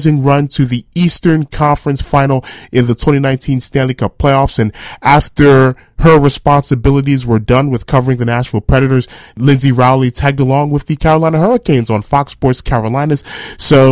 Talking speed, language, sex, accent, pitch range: 155 wpm, English, male, American, 115-150 Hz